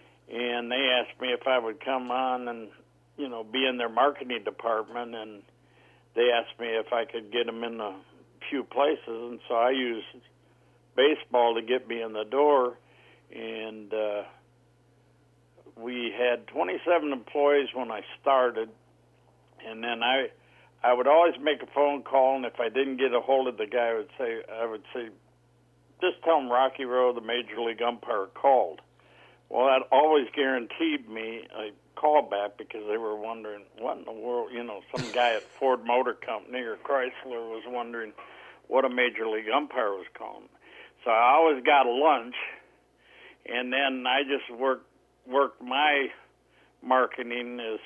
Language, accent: English, American